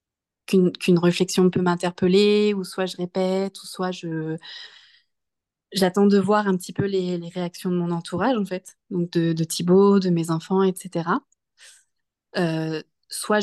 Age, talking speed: 20-39, 160 wpm